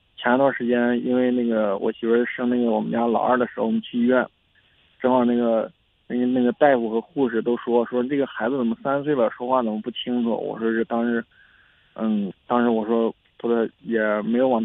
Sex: male